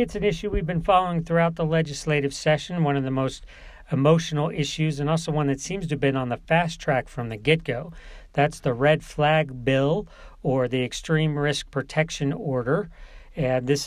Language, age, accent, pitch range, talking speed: English, 40-59, American, 135-155 Hz, 190 wpm